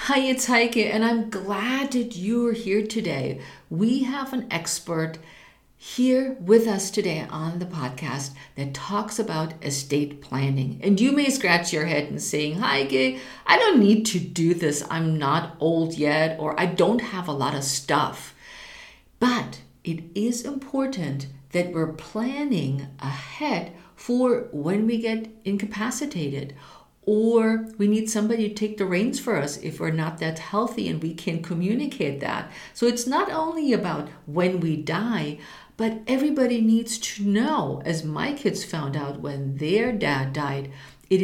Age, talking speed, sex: 50-69, 160 wpm, female